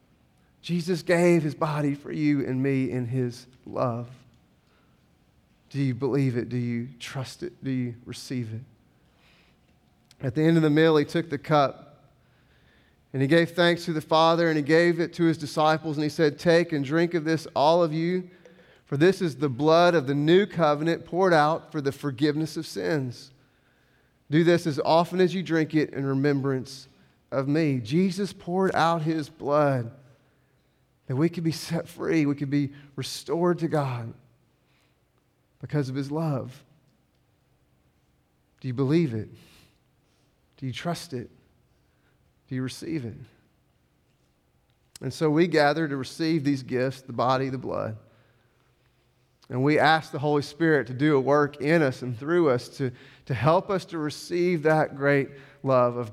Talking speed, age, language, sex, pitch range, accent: 165 wpm, 30-49, English, male, 125-160 Hz, American